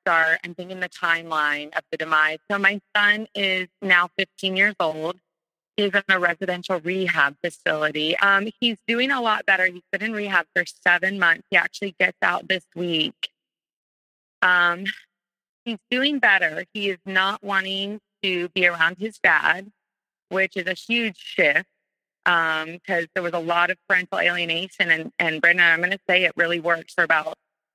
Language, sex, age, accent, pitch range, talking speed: English, female, 30-49, American, 170-195 Hz, 175 wpm